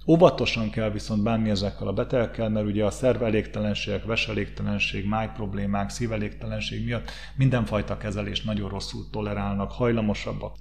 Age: 30-49